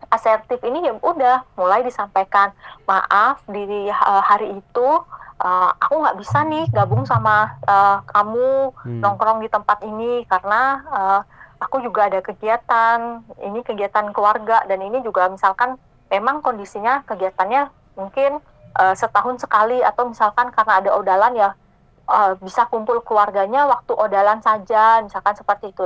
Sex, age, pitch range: female, 20-39, 200-245 Hz